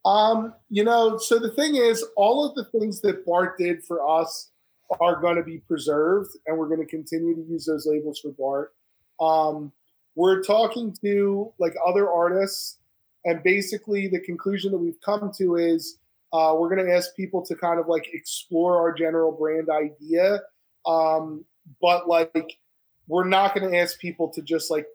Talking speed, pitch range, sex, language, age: 180 wpm, 155-185 Hz, male, English, 20-39